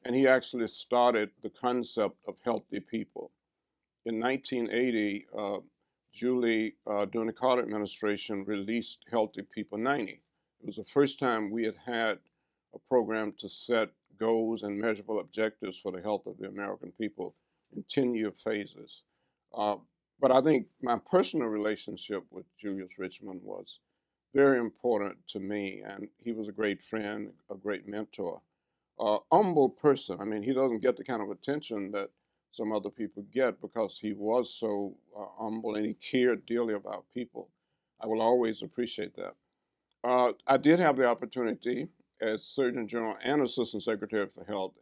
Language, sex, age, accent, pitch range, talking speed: English, male, 50-69, American, 105-125 Hz, 160 wpm